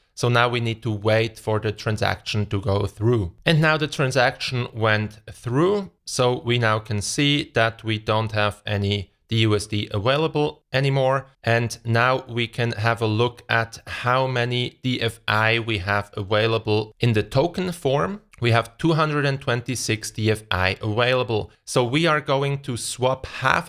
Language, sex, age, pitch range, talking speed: English, male, 30-49, 105-130 Hz, 155 wpm